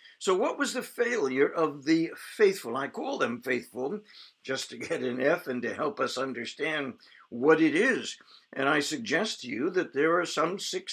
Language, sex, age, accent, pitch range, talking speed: English, male, 60-79, American, 145-230 Hz, 190 wpm